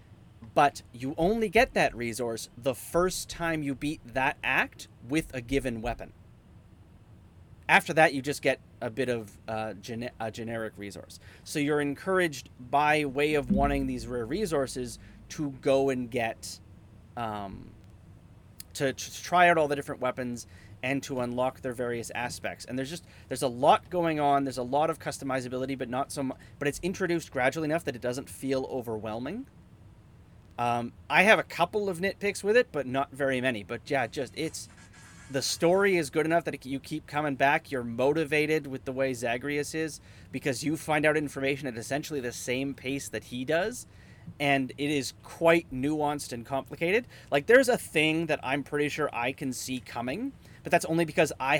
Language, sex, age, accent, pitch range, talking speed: English, male, 30-49, American, 115-150 Hz, 185 wpm